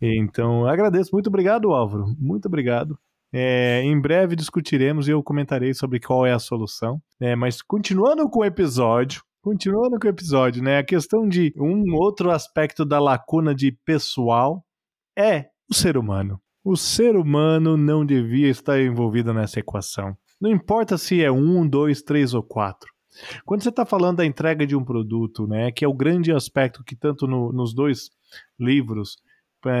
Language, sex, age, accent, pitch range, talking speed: Portuguese, male, 20-39, Brazilian, 125-190 Hz, 165 wpm